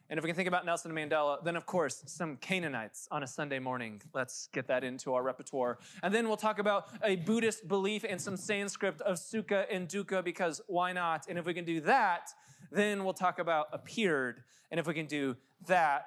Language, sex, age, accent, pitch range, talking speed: English, male, 20-39, American, 135-175 Hz, 215 wpm